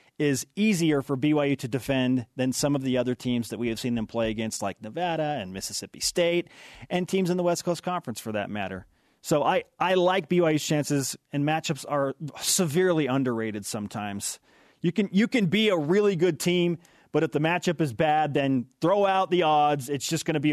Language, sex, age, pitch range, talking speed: English, male, 30-49, 130-175 Hz, 205 wpm